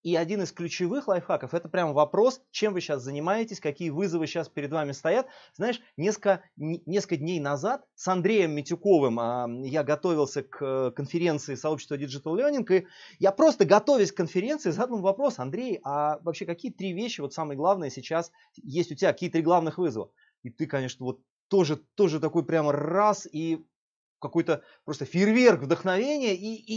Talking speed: 170 wpm